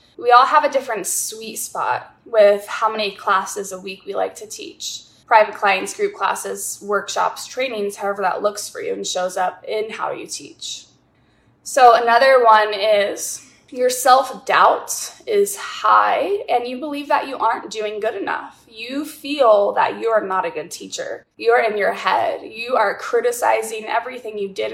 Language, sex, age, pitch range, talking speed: English, female, 20-39, 210-260 Hz, 170 wpm